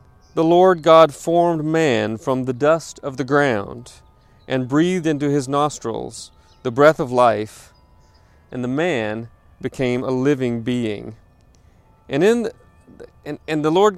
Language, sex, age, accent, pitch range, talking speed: English, male, 40-59, American, 105-150 Hz, 145 wpm